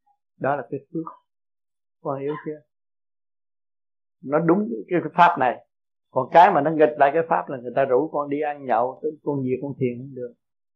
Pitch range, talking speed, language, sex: 125-155 Hz, 190 wpm, Vietnamese, male